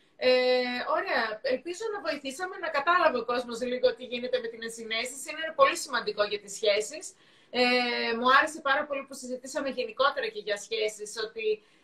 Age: 30-49